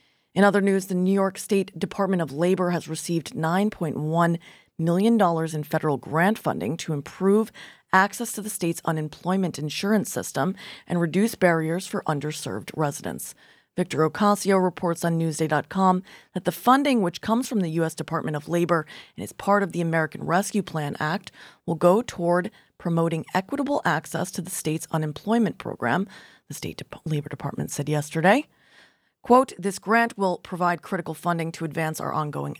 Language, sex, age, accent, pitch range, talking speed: English, female, 30-49, American, 155-190 Hz, 160 wpm